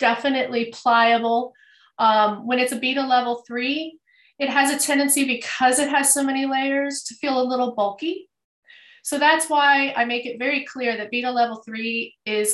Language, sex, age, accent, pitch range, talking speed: English, female, 30-49, American, 220-265 Hz, 175 wpm